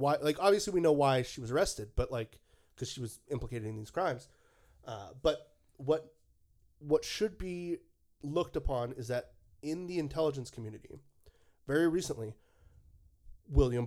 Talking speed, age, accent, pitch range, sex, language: 150 wpm, 30-49, American, 115-145 Hz, male, English